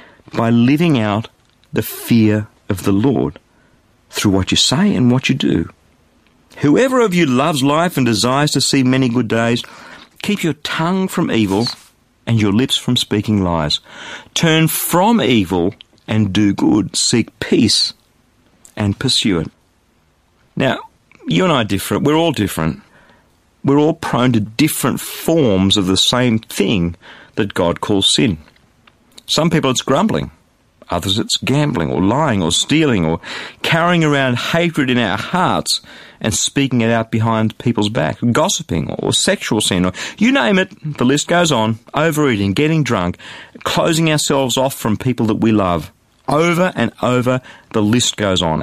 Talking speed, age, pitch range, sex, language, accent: 155 wpm, 50-69, 105-145 Hz, male, English, Australian